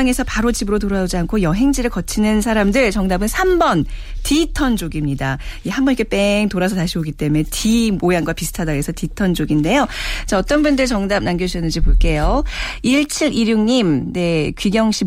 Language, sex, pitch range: Korean, female, 170-240 Hz